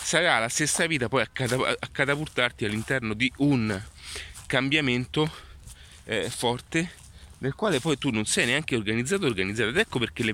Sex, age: male, 30-49